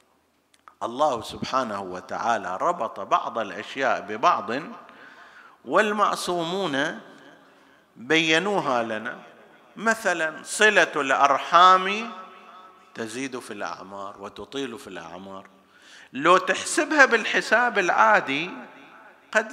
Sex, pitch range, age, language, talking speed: male, 125-180 Hz, 50-69, Arabic, 75 wpm